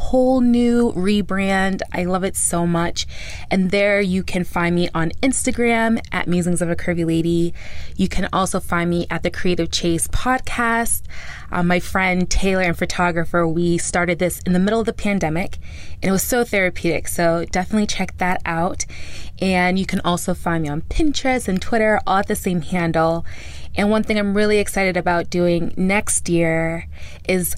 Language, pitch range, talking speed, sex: English, 170-190 Hz, 180 wpm, female